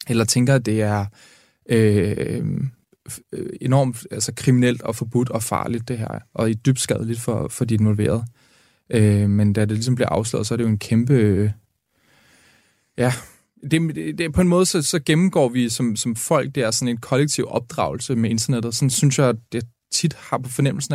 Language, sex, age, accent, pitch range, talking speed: Danish, male, 20-39, native, 115-135 Hz, 170 wpm